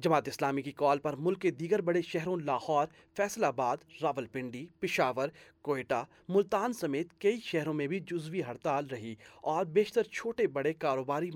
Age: 30-49